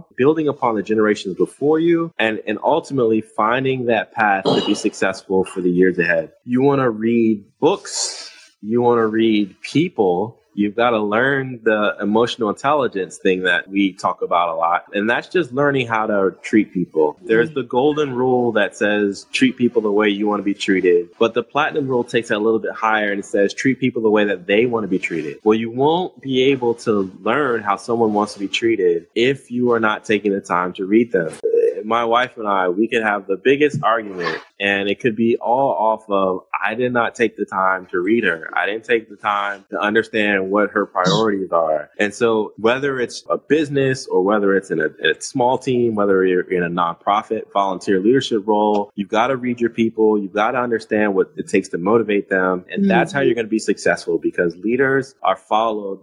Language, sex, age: English, male, 20-39